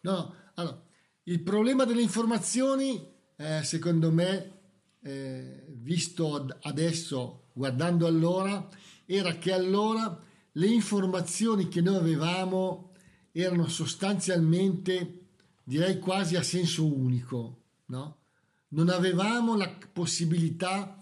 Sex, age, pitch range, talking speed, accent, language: male, 50-69, 155-195 Hz, 90 wpm, native, Italian